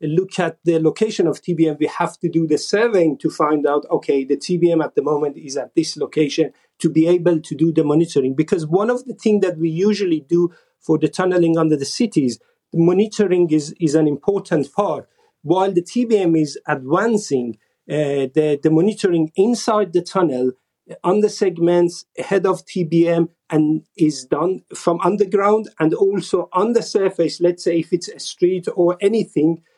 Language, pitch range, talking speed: English, 160-195 Hz, 180 wpm